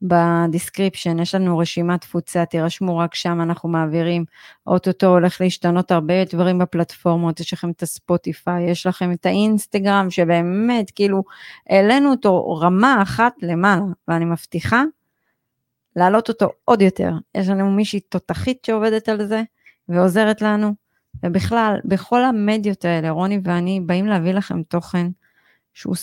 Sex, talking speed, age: female, 130 wpm, 30-49